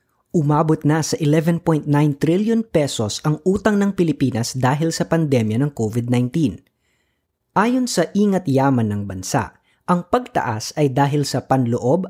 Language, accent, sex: Filipino, native, female